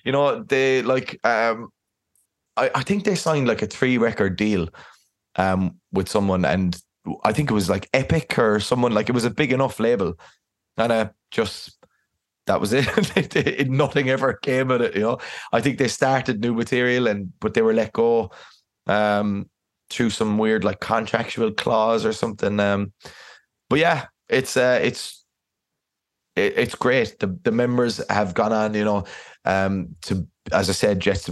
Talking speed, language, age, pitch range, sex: 180 wpm, English, 20-39, 95-125 Hz, male